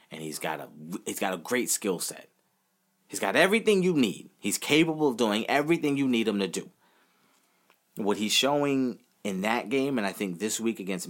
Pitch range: 95-140 Hz